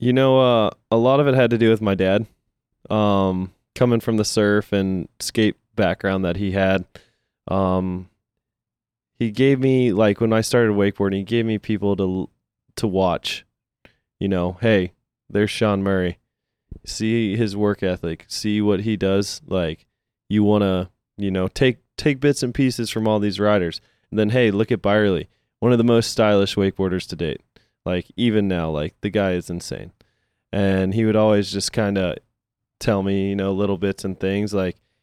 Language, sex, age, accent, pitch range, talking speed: English, male, 20-39, American, 95-110 Hz, 185 wpm